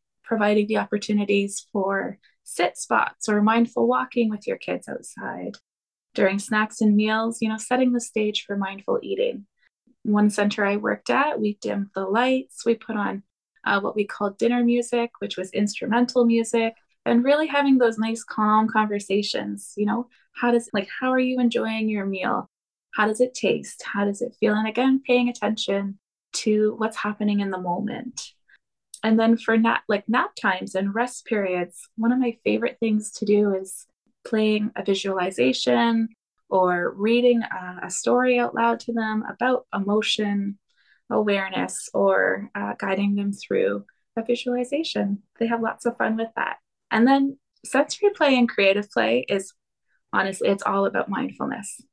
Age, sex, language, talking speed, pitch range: 20-39, female, English, 165 wpm, 200-240 Hz